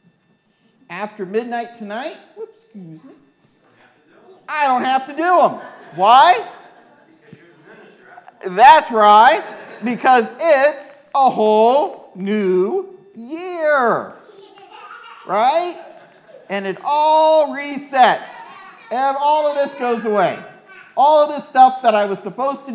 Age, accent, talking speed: 50-69, American, 105 wpm